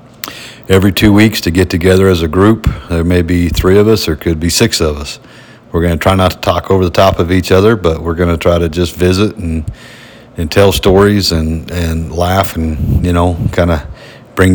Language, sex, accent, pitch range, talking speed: English, male, American, 85-100 Hz, 225 wpm